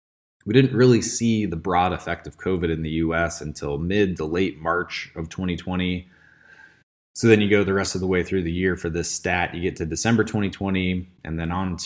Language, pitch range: English, 80-110 Hz